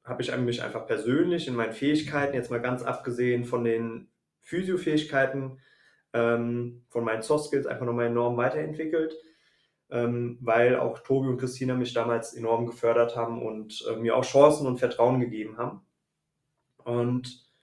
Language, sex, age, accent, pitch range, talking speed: German, male, 20-39, German, 120-145 Hz, 155 wpm